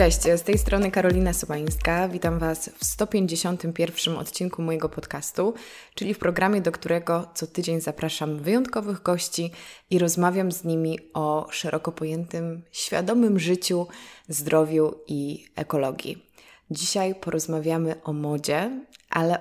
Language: Polish